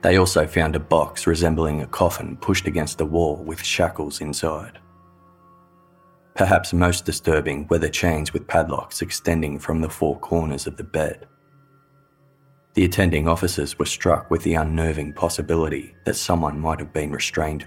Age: 20-39